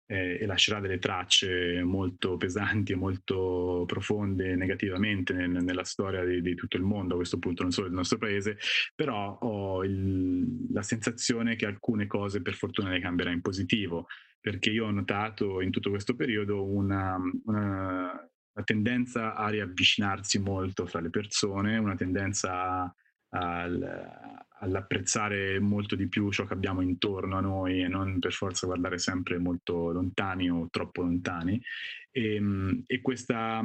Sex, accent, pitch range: male, native, 95-110 Hz